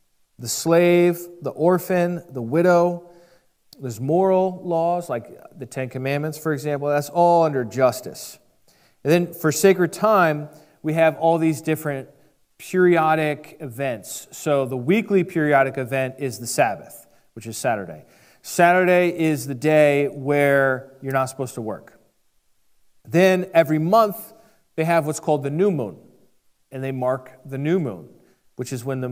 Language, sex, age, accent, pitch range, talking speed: English, male, 40-59, American, 135-170 Hz, 150 wpm